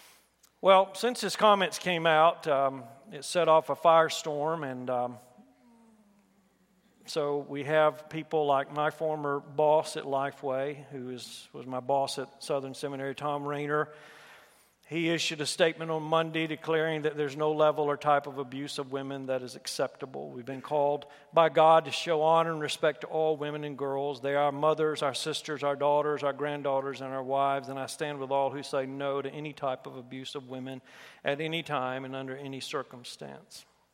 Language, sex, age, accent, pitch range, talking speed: English, male, 50-69, American, 140-160 Hz, 180 wpm